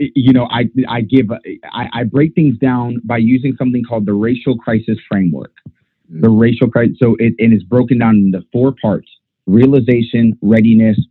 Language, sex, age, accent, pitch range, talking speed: English, male, 30-49, American, 105-130 Hz, 165 wpm